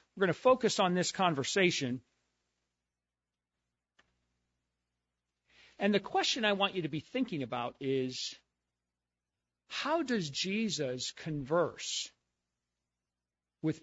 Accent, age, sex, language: American, 50-69, male, English